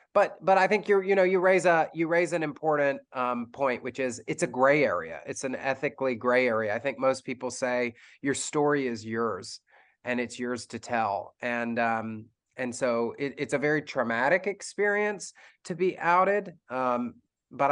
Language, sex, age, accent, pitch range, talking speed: English, male, 30-49, American, 120-140 Hz, 190 wpm